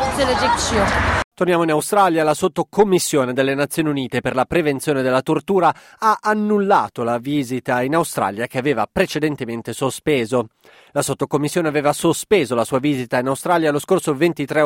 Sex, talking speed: male, 145 wpm